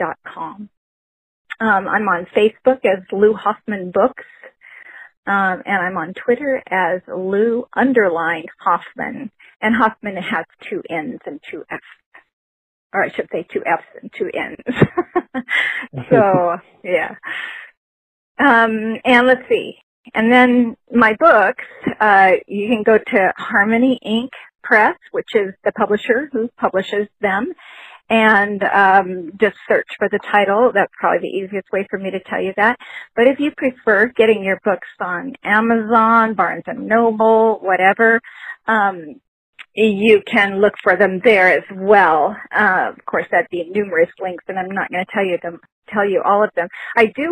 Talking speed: 155 wpm